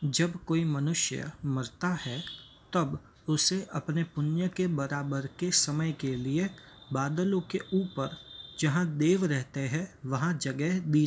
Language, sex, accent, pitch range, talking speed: Hindi, male, native, 135-170 Hz, 135 wpm